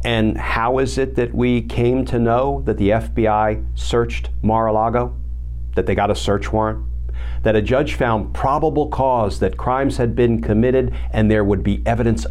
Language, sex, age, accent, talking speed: English, male, 50-69, American, 175 wpm